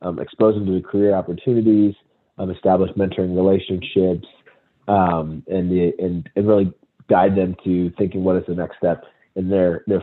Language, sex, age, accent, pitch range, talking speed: English, male, 30-49, American, 95-110 Hz, 175 wpm